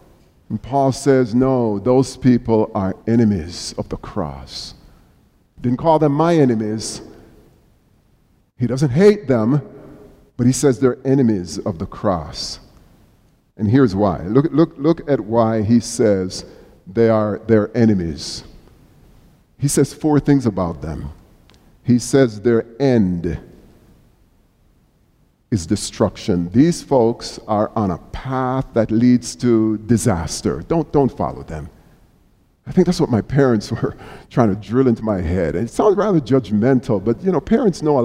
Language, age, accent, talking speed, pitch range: English, 50-69, American, 145 wpm, 110-155 Hz